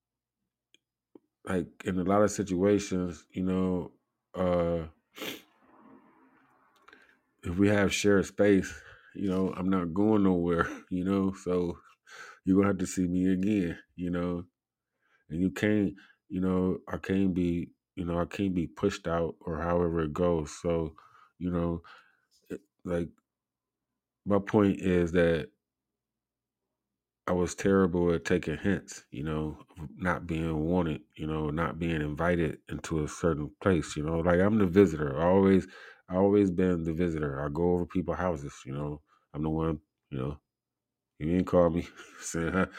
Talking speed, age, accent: 155 wpm, 20-39, American